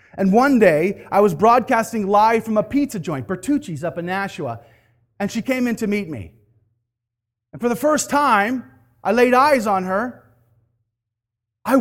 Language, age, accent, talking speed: English, 30-49, American, 170 wpm